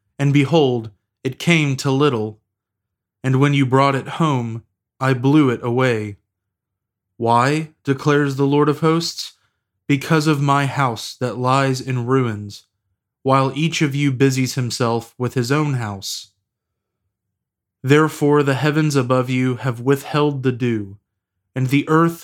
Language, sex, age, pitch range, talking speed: English, male, 20-39, 110-140 Hz, 140 wpm